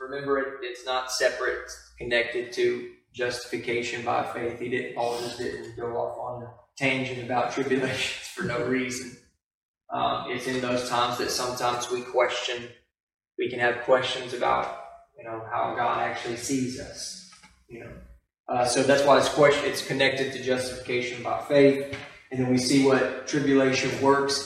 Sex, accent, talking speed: male, American, 165 wpm